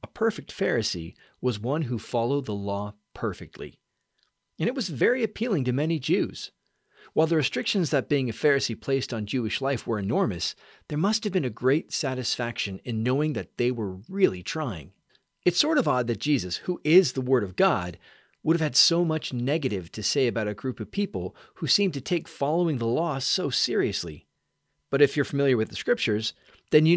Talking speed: 195 wpm